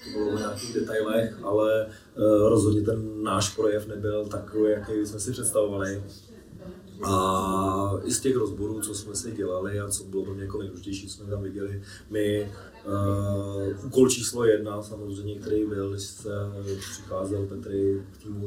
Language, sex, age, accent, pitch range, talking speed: Czech, male, 20-39, native, 100-105 Hz, 155 wpm